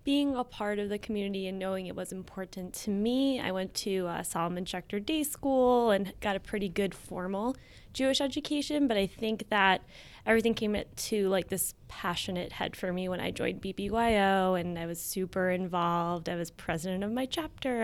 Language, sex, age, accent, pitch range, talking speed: English, female, 20-39, American, 180-205 Hz, 190 wpm